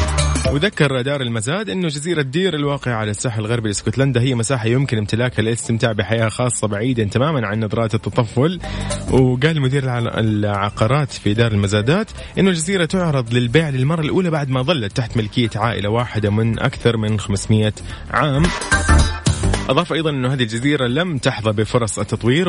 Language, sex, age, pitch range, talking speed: Arabic, male, 30-49, 105-135 Hz, 150 wpm